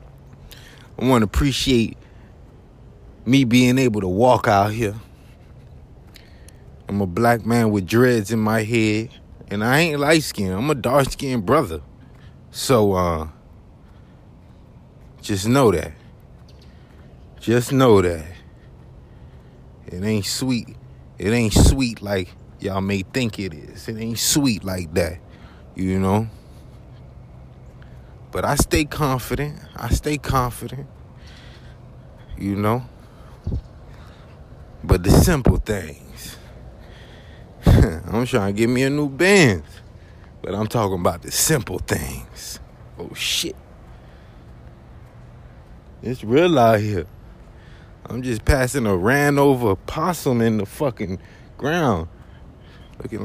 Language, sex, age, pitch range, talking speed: English, male, 20-39, 90-125 Hz, 115 wpm